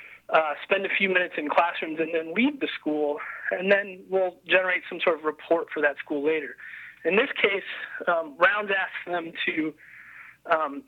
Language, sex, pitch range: English, male, 155-230 Hz